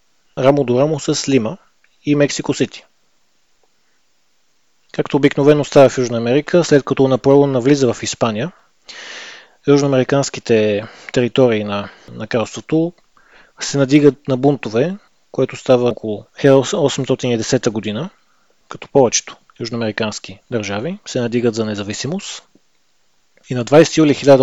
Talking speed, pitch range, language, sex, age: 115 wpm, 115-135 Hz, Bulgarian, male, 30-49